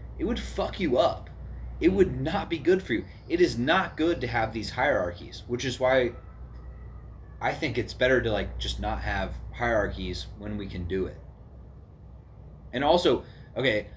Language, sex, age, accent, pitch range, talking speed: English, male, 30-49, American, 90-130 Hz, 175 wpm